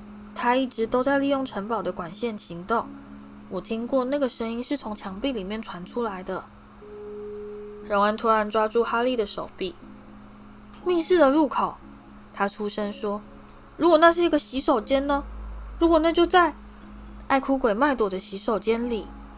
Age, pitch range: 10-29, 185-250 Hz